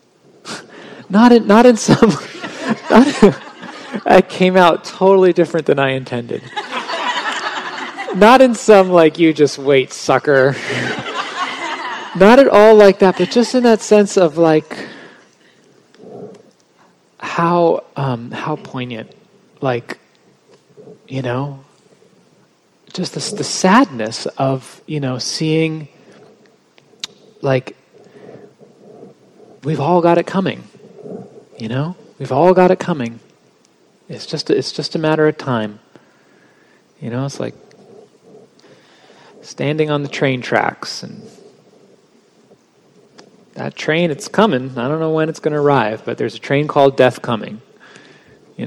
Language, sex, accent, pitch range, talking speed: English, male, American, 130-185 Hz, 120 wpm